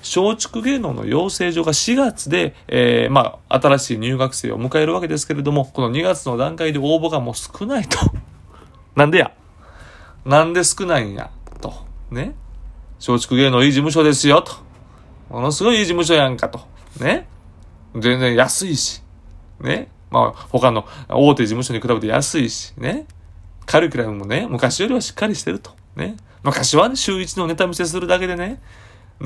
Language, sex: Japanese, male